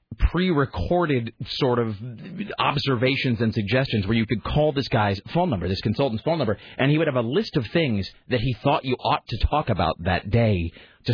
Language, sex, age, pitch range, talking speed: English, male, 40-59, 105-140 Hz, 200 wpm